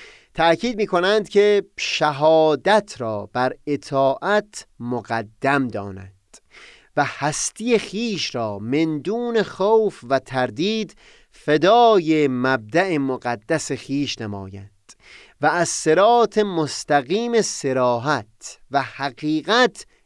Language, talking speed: Persian, 90 wpm